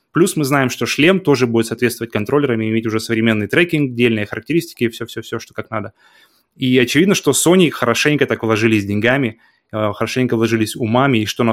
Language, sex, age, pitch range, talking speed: Russian, male, 20-39, 115-140 Hz, 175 wpm